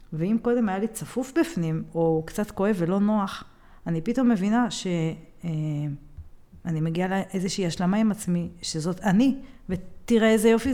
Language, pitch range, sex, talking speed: Hebrew, 170-230 Hz, female, 145 wpm